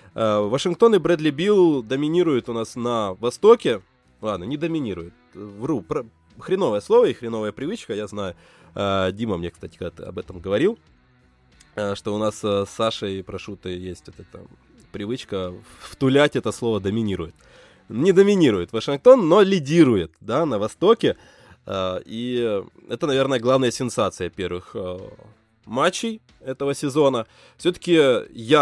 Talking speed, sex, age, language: 120 wpm, male, 20-39, Russian